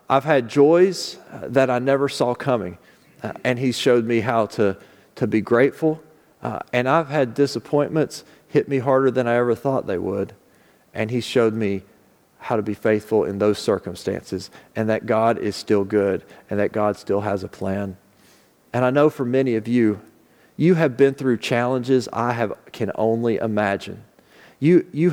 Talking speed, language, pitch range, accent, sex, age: 180 wpm, English, 105-140 Hz, American, male, 40-59